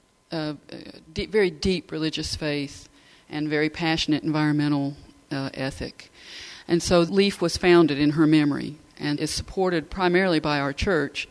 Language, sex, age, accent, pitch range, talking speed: English, female, 40-59, American, 150-180 Hz, 145 wpm